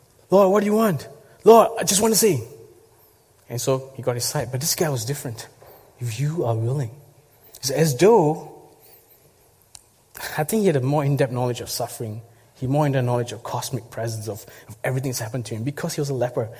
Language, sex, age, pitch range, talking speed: English, male, 20-39, 120-160 Hz, 210 wpm